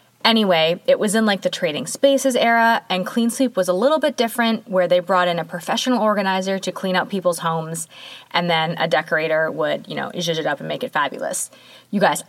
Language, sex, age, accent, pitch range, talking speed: English, female, 20-39, American, 170-235 Hz, 220 wpm